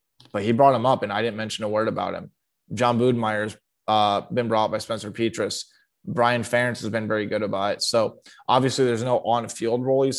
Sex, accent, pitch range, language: male, American, 110-130 Hz, English